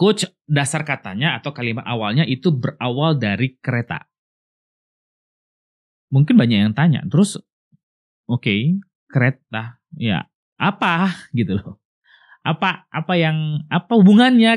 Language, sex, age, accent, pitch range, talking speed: Indonesian, male, 30-49, native, 120-175 Hz, 110 wpm